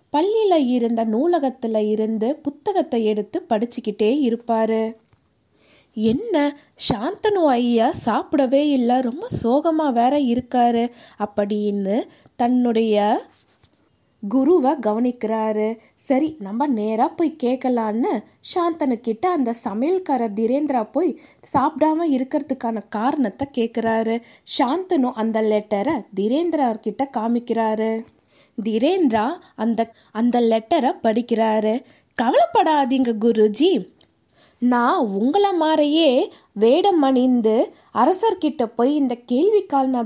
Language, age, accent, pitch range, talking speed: Tamil, 20-39, native, 230-295 Hz, 80 wpm